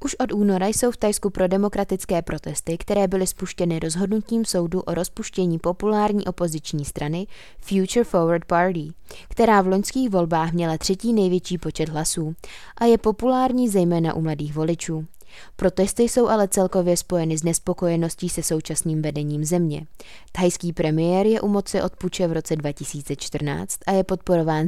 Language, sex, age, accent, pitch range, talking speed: Czech, female, 20-39, native, 165-195 Hz, 150 wpm